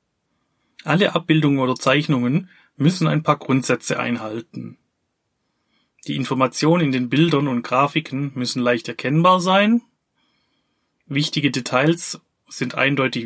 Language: German